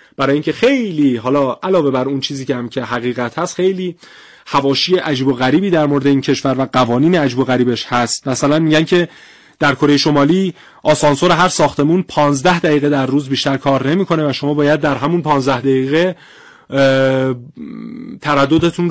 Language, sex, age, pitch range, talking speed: Persian, male, 30-49, 135-170 Hz, 165 wpm